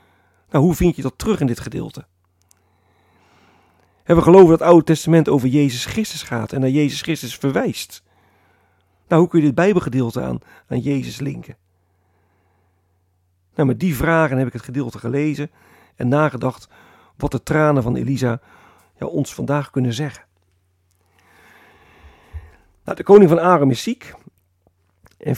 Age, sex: 50-69, male